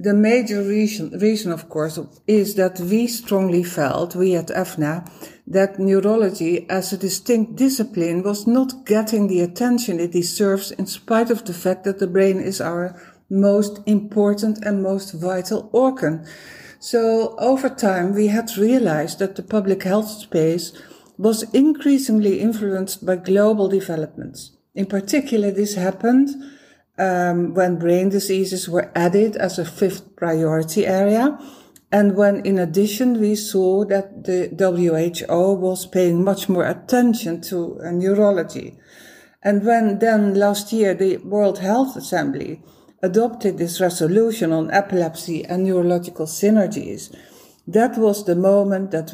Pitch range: 175-210 Hz